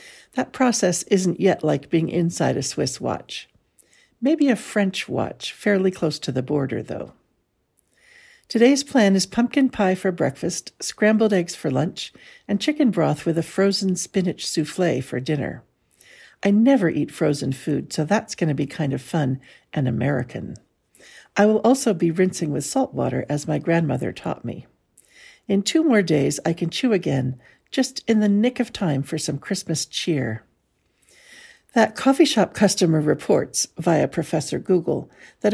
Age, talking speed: 60-79, 160 wpm